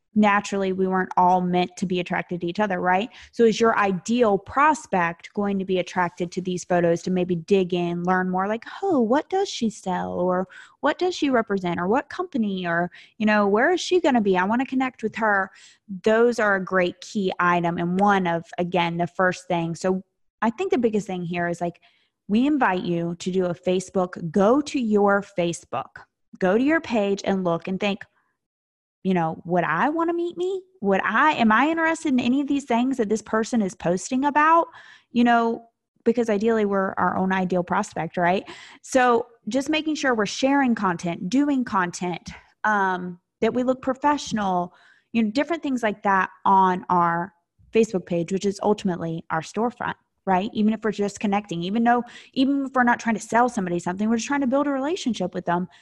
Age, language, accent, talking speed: 20-39, English, American, 205 wpm